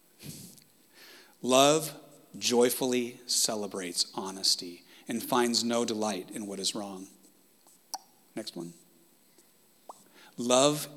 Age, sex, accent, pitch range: 40-59, male, American, 110-140 Hz